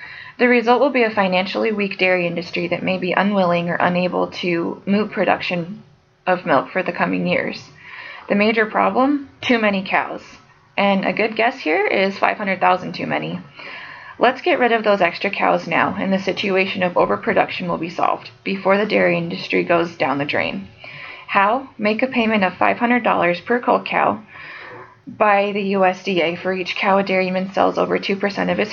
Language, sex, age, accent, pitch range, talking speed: English, female, 20-39, American, 180-210 Hz, 180 wpm